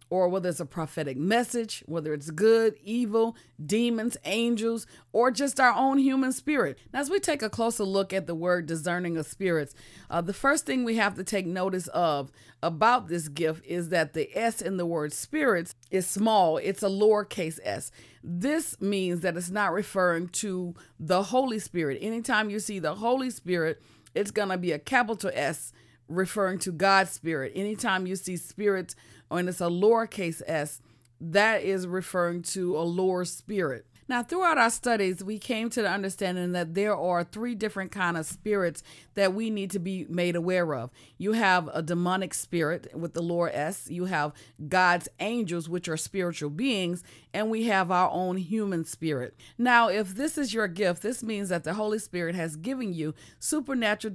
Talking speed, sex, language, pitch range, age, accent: 185 wpm, female, English, 170-220 Hz, 40-59, American